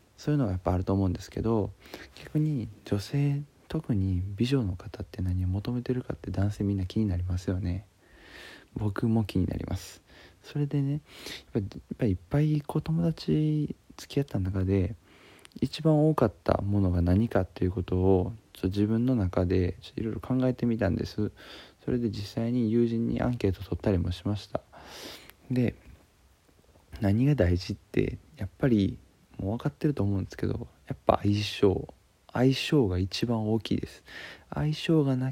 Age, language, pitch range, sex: 20-39, Japanese, 95-130 Hz, male